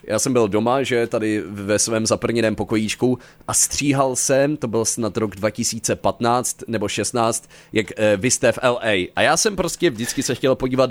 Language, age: Czech, 30-49